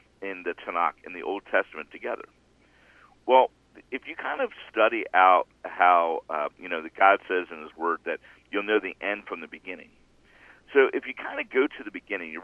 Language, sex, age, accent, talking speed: English, male, 50-69, American, 210 wpm